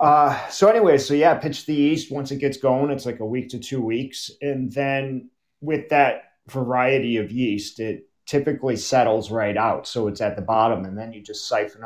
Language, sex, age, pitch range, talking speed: English, male, 40-59, 110-140 Hz, 205 wpm